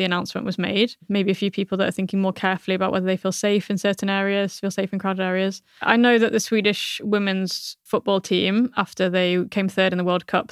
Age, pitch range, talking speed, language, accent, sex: 10-29, 185-205 Hz, 240 wpm, English, British, female